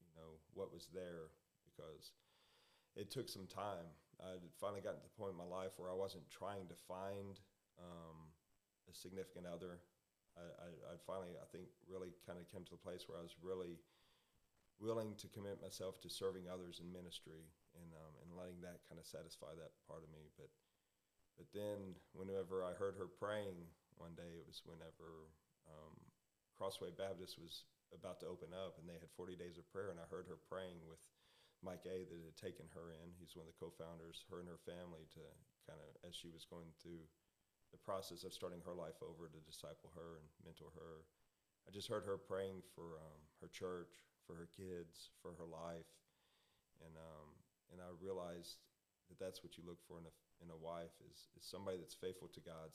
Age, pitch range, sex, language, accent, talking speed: 40-59, 85-95 Hz, male, English, American, 200 wpm